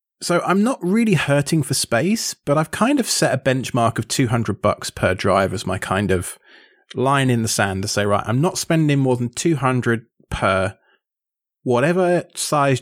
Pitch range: 110-140 Hz